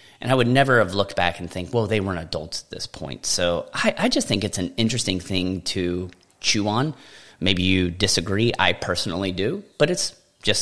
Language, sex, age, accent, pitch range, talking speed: English, male, 30-49, American, 90-125 Hz, 210 wpm